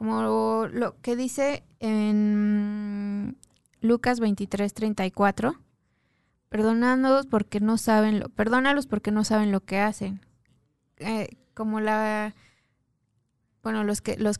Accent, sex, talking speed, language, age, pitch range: Mexican, female, 115 wpm, Spanish, 20-39, 200-235 Hz